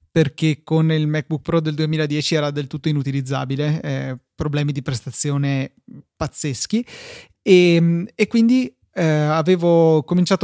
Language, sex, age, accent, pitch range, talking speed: Italian, male, 20-39, native, 145-170 Hz, 125 wpm